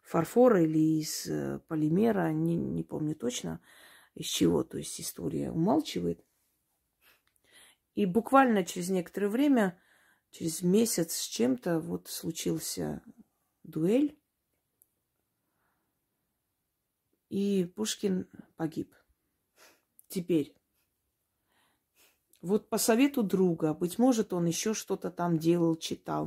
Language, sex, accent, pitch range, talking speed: Russian, female, native, 155-220 Hz, 95 wpm